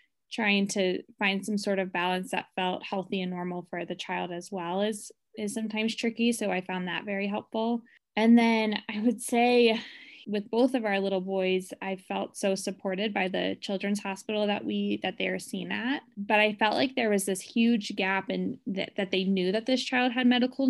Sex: female